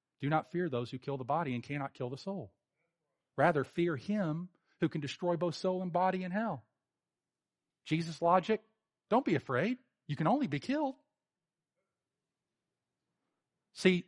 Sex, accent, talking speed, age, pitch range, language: male, American, 155 wpm, 40-59, 130-180 Hz, English